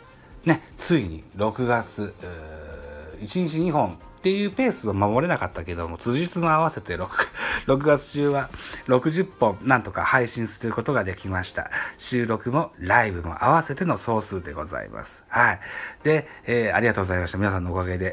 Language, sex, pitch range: Japanese, male, 90-135 Hz